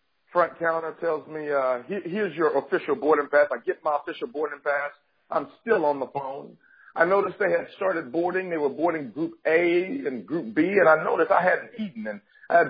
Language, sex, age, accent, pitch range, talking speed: English, male, 50-69, American, 155-195 Hz, 215 wpm